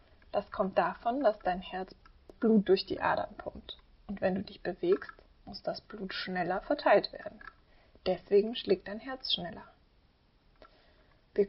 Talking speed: 145 wpm